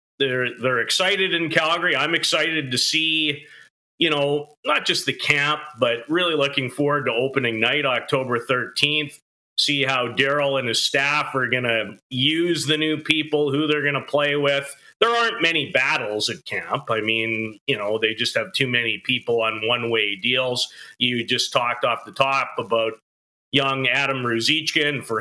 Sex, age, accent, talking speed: male, 40-59, American, 170 wpm